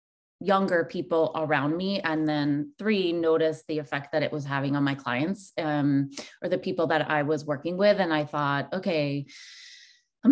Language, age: English, 20-39